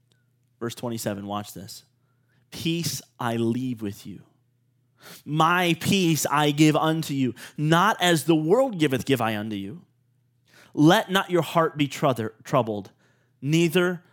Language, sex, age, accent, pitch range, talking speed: English, male, 20-39, American, 125-170 Hz, 130 wpm